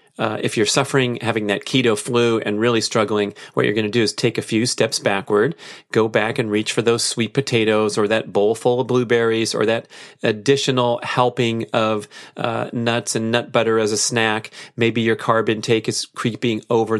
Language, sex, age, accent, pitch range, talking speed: English, male, 30-49, American, 110-130 Hz, 200 wpm